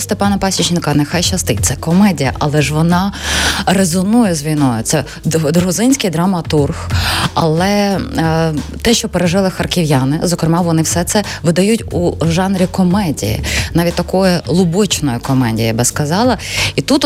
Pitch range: 155-210 Hz